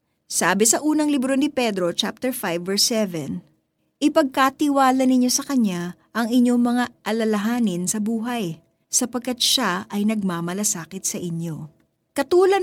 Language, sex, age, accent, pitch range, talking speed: Filipino, female, 20-39, native, 185-255 Hz, 130 wpm